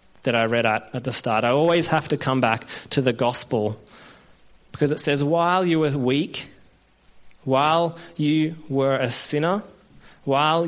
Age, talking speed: 20-39, 165 wpm